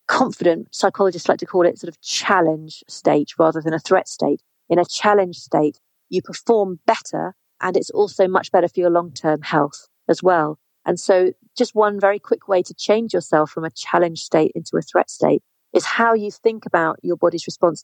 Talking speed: 200 wpm